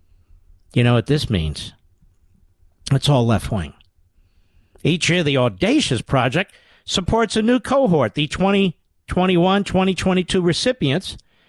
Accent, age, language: American, 50-69, English